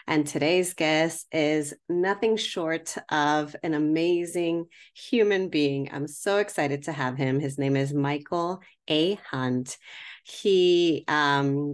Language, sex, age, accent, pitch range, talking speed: English, female, 30-49, American, 140-165 Hz, 130 wpm